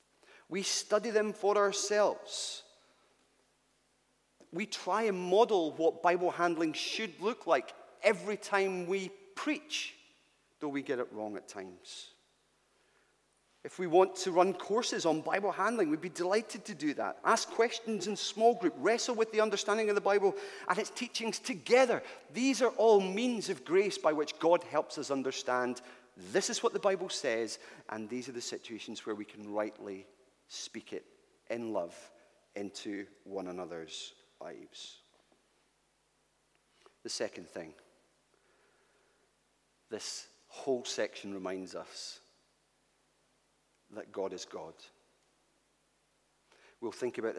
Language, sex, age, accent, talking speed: English, male, 30-49, British, 135 wpm